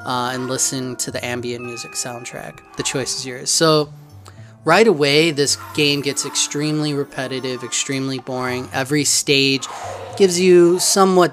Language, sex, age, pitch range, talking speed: English, male, 20-39, 125-150 Hz, 145 wpm